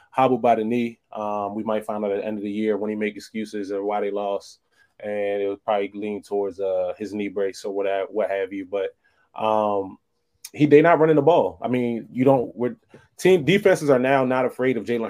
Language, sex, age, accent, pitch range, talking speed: English, male, 20-39, American, 105-140 Hz, 240 wpm